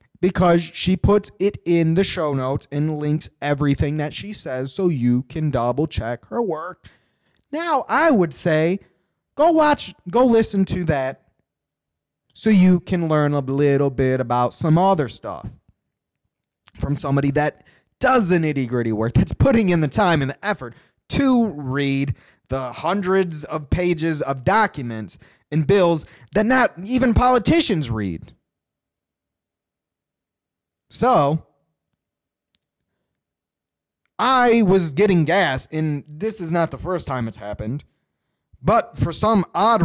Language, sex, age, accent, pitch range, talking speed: English, male, 20-39, American, 135-190 Hz, 135 wpm